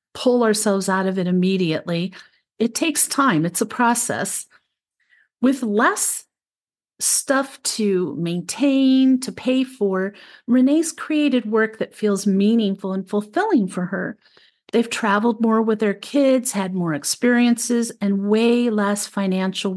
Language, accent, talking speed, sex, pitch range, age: English, American, 130 wpm, female, 195-250 Hz, 50-69